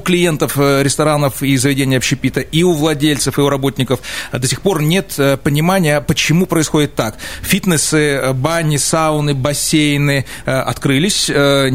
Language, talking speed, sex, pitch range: Russian, 125 wpm, male, 130-155 Hz